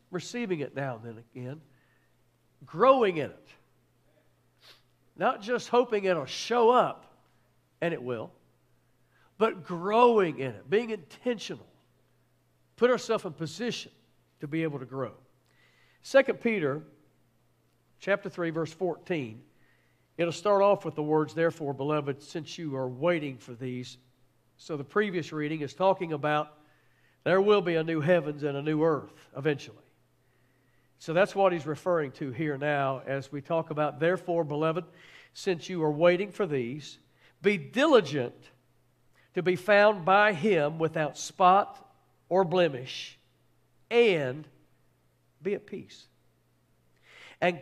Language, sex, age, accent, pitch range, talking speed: English, male, 60-79, American, 135-190 Hz, 135 wpm